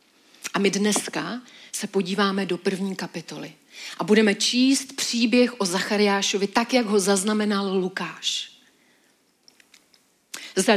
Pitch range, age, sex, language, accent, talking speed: 195-240 Hz, 40-59, female, Czech, native, 110 wpm